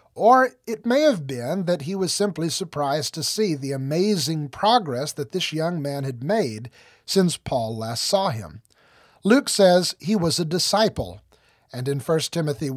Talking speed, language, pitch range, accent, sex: 170 wpm, English, 130-190 Hz, American, male